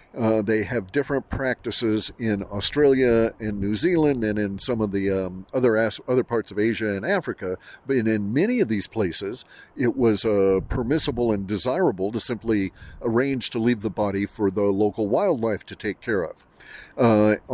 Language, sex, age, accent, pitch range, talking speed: English, male, 50-69, American, 100-120 Hz, 180 wpm